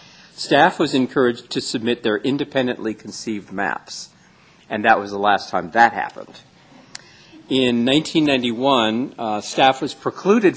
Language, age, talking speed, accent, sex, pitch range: English, 50-69, 130 wpm, American, male, 100-130 Hz